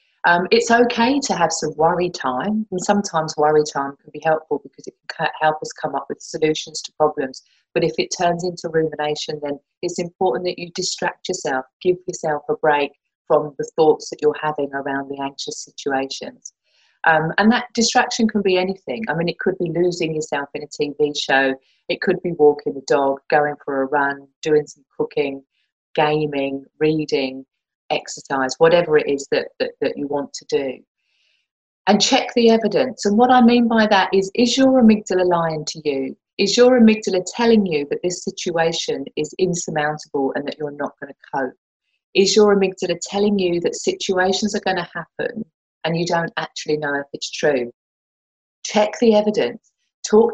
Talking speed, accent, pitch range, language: 185 wpm, British, 150-205 Hz, English